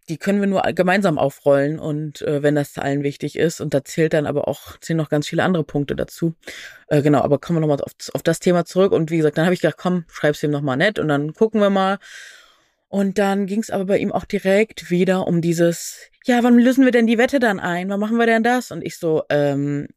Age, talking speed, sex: 20-39, 250 wpm, female